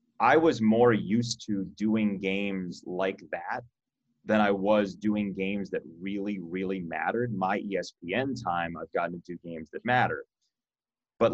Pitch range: 100-120 Hz